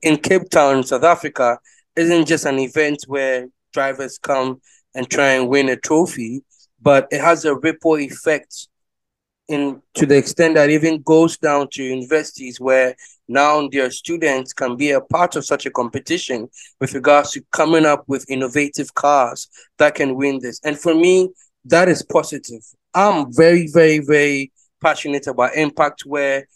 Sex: male